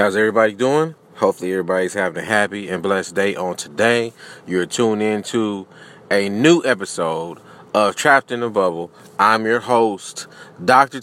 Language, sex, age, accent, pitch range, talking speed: English, male, 30-49, American, 105-135 Hz, 160 wpm